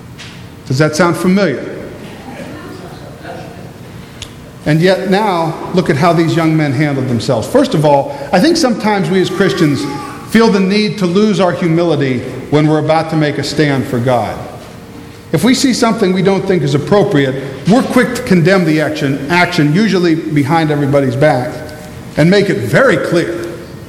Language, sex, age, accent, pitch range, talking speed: English, male, 50-69, American, 145-215 Hz, 165 wpm